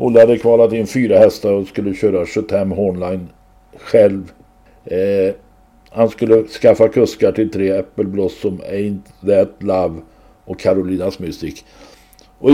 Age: 60-79